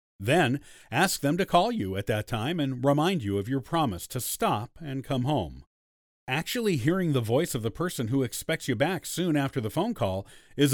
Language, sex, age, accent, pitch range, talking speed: English, male, 50-69, American, 110-160 Hz, 205 wpm